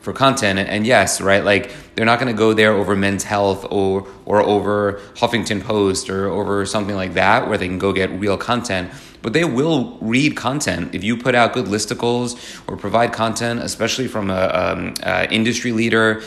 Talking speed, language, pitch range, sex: 195 wpm, English, 95-115 Hz, male